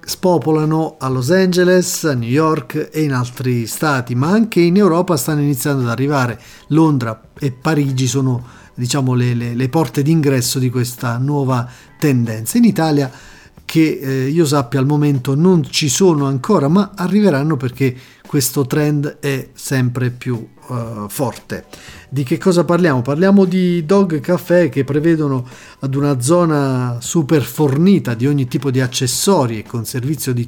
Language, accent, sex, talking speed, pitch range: Italian, native, male, 155 wpm, 130-165 Hz